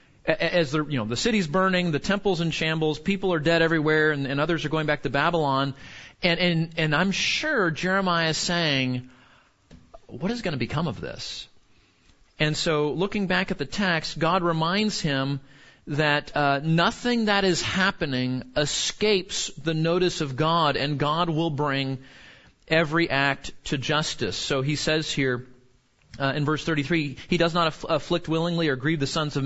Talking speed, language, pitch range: 165 wpm, English, 145-180 Hz